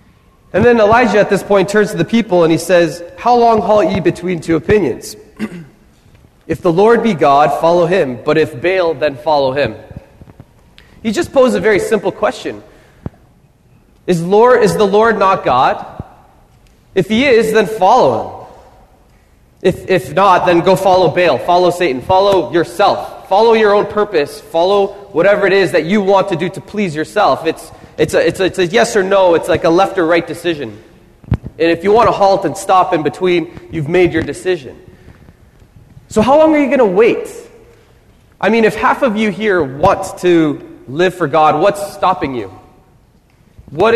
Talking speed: 180 wpm